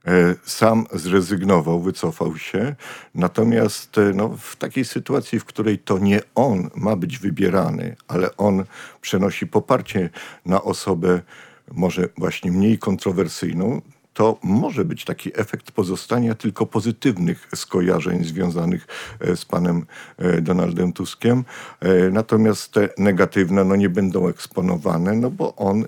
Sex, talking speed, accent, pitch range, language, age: male, 110 wpm, native, 85-105 Hz, Polish, 50-69